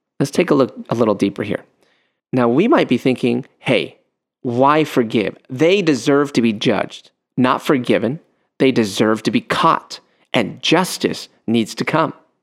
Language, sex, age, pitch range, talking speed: English, male, 30-49, 125-180 Hz, 160 wpm